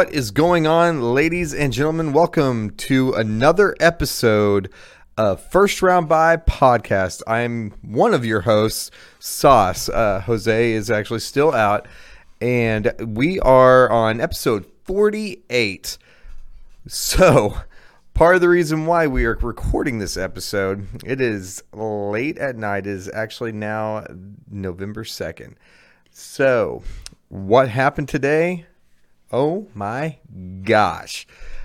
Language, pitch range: English, 100-130 Hz